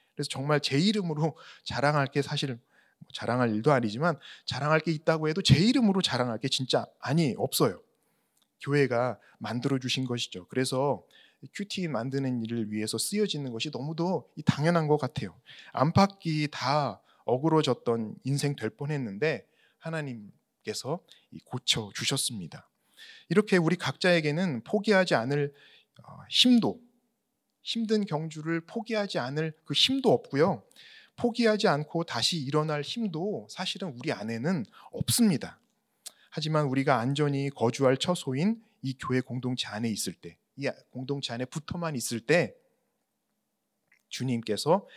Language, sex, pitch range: Korean, male, 125-175 Hz